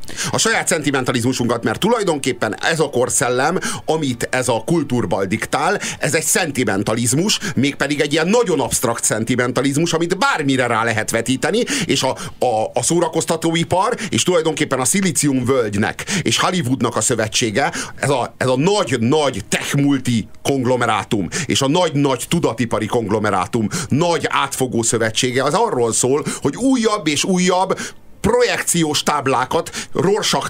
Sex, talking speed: male, 125 wpm